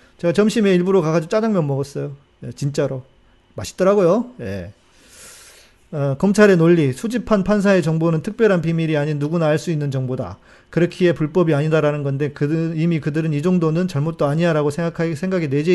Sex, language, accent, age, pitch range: male, Korean, native, 40-59, 120-170 Hz